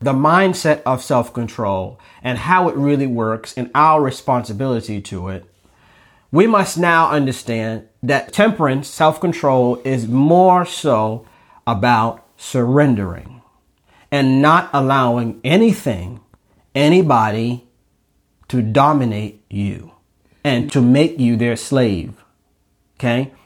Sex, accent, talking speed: male, American, 105 wpm